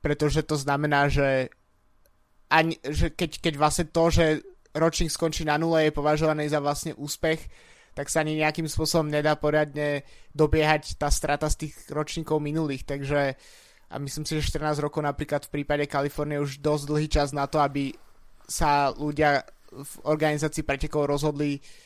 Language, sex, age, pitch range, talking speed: Slovak, male, 20-39, 145-155 Hz, 160 wpm